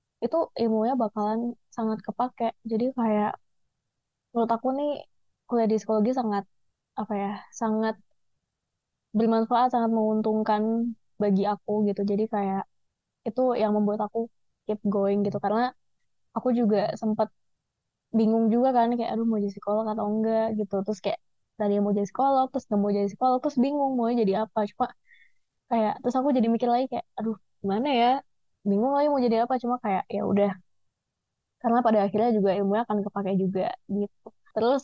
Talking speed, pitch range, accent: 160 wpm, 210-245 Hz, native